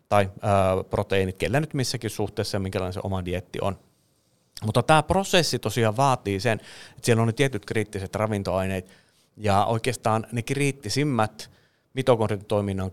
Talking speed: 140 wpm